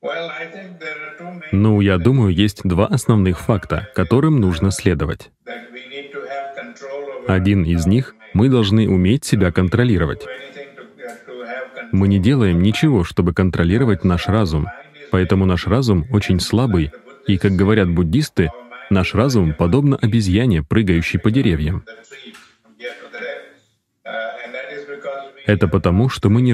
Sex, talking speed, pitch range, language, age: male, 105 wpm, 90-120 Hz, Russian, 30-49